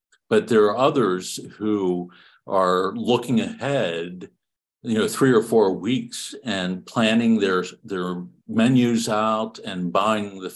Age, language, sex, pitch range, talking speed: 50-69, English, male, 90-115 Hz, 130 wpm